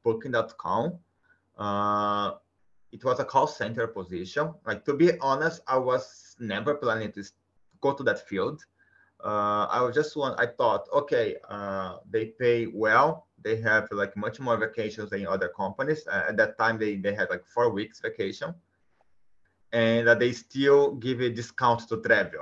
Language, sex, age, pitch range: Japanese, male, 30-49, 105-130 Hz